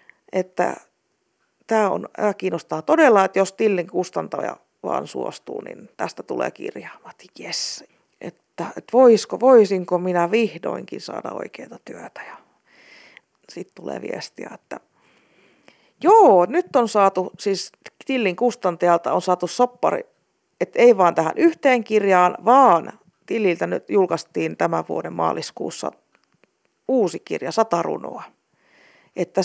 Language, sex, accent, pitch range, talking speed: Finnish, female, native, 185-300 Hz, 115 wpm